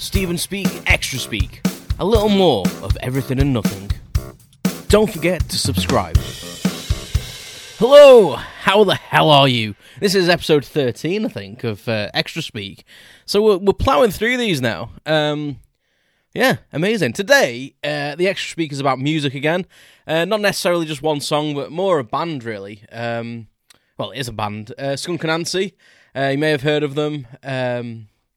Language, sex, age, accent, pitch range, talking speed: English, male, 20-39, British, 115-155 Hz, 165 wpm